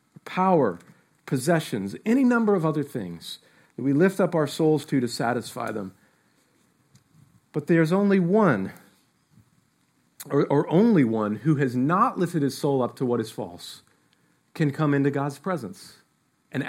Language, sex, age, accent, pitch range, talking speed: English, male, 40-59, American, 135-180 Hz, 150 wpm